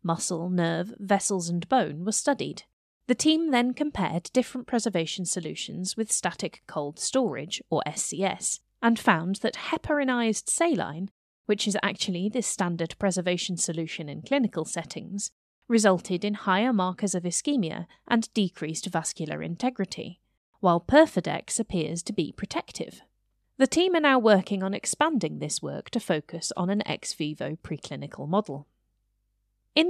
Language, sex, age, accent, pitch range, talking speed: English, female, 30-49, British, 170-230 Hz, 140 wpm